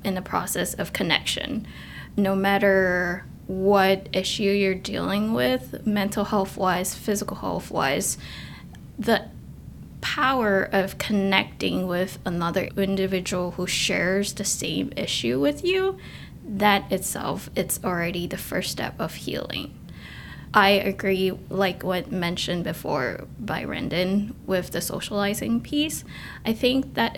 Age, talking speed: 20-39, 125 wpm